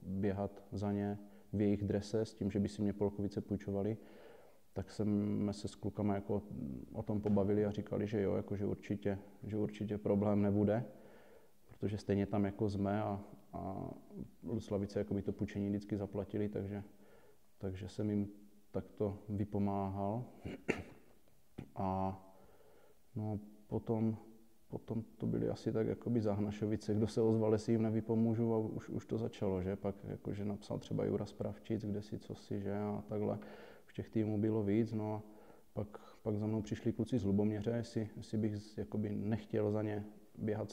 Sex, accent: male, native